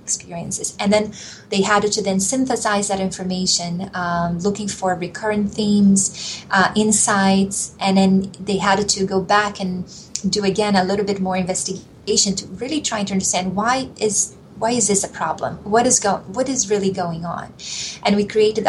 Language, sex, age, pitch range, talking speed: English, female, 20-39, 190-210 Hz, 175 wpm